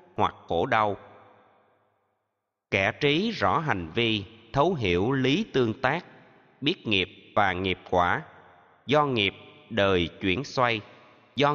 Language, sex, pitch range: Vietnamese, male, 100-130 Hz